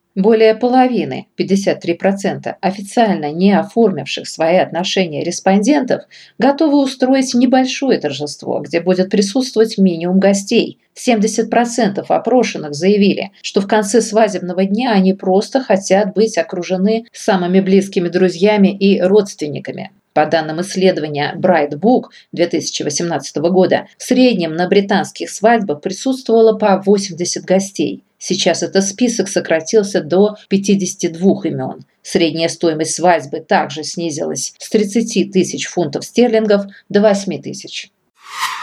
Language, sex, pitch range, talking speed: English, female, 175-225 Hz, 110 wpm